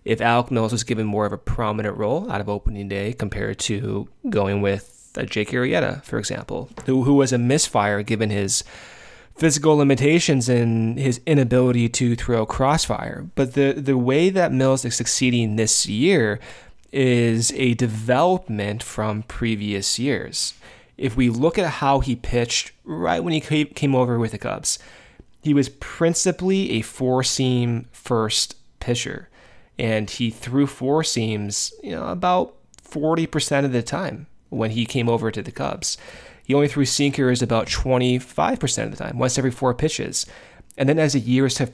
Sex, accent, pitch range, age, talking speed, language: male, American, 110-140 Hz, 20-39, 165 wpm, English